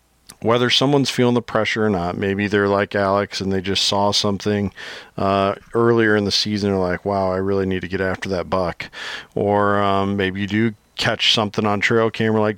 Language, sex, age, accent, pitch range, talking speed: English, male, 40-59, American, 100-120 Hz, 205 wpm